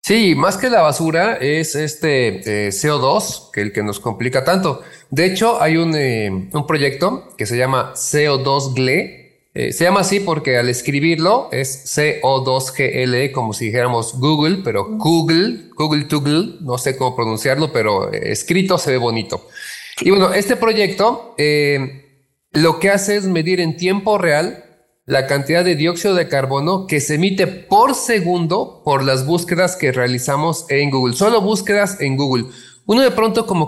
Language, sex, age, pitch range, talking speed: Spanish, male, 30-49, 130-180 Hz, 165 wpm